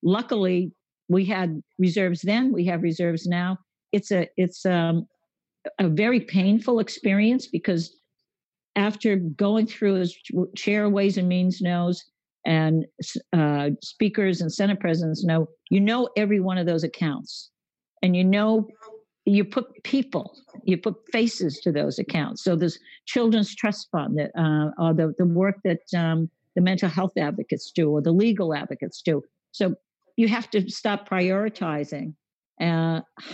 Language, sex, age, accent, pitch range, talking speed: English, female, 50-69, American, 165-205 Hz, 150 wpm